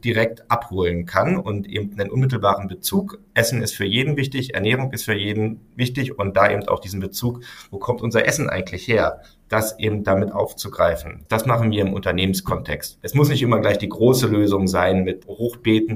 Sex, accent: male, German